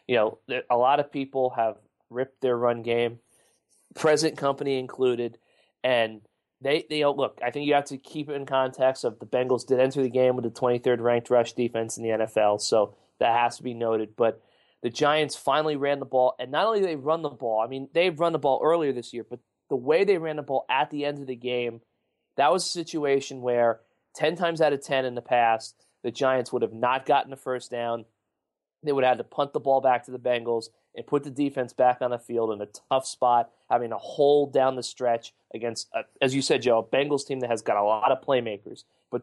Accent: American